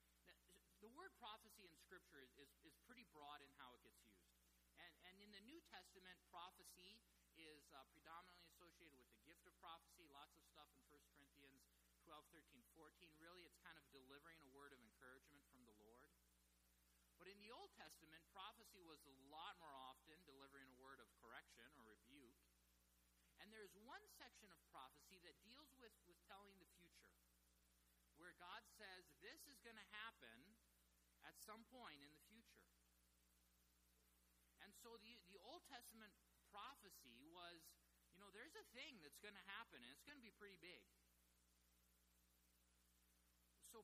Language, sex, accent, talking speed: English, male, American, 165 wpm